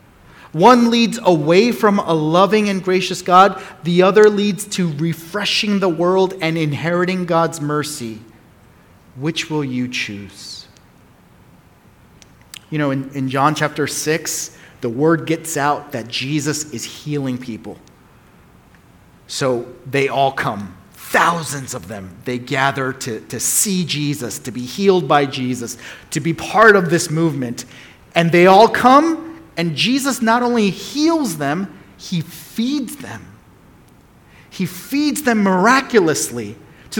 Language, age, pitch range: English, 30-49, 125-195 Hz